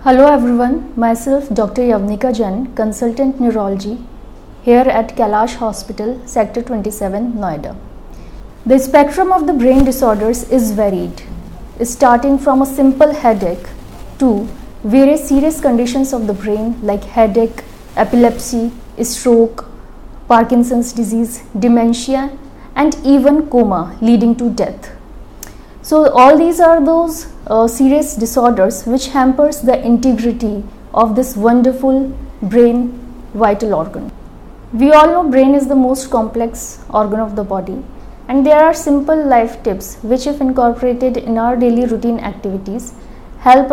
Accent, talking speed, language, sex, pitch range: Indian, 130 wpm, English, female, 225-270 Hz